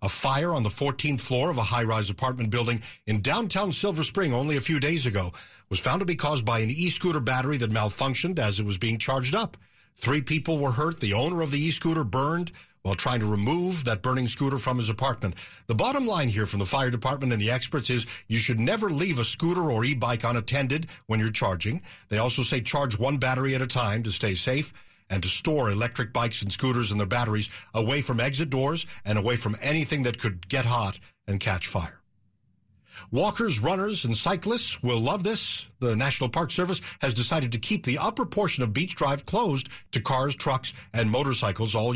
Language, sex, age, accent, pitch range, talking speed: English, male, 50-69, American, 115-145 Hz, 210 wpm